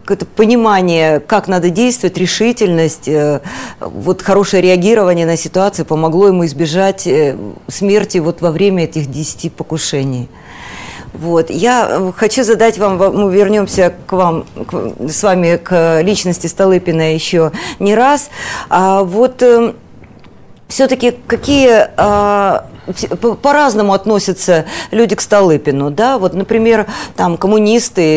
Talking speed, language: 110 wpm, Russian